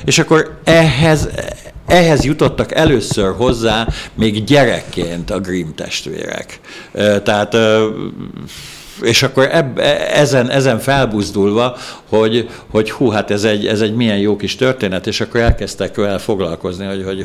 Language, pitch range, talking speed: Hungarian, 100-135 Hz, 130 wpm